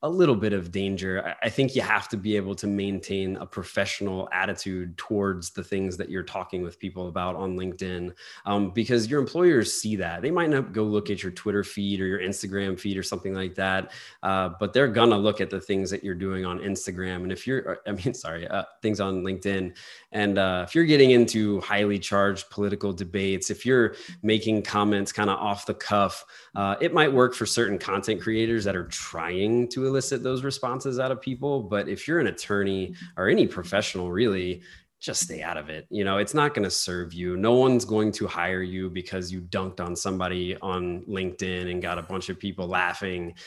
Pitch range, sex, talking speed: 95-105 Hz, male, 215 wpm